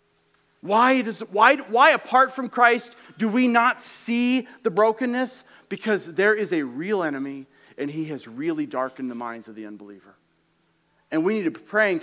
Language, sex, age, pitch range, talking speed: English, male, 40-59, 170-240 Hz, 175 wpm